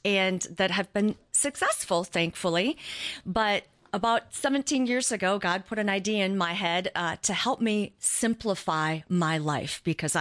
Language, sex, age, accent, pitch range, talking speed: English, female, 40-59, American, 175-215 Hz, 155 wpm